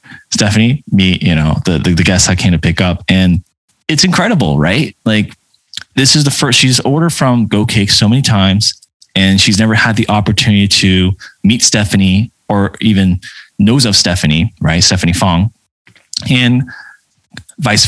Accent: American